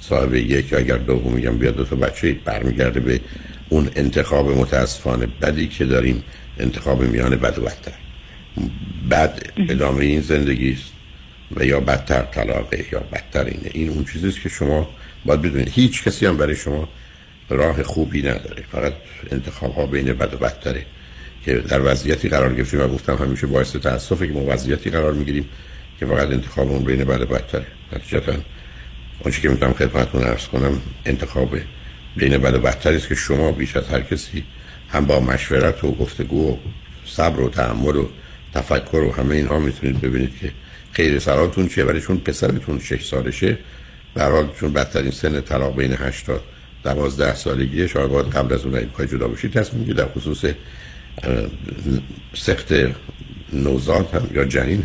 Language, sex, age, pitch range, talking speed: Persian, male, 60-79, 65-70 Hz, 160 wpm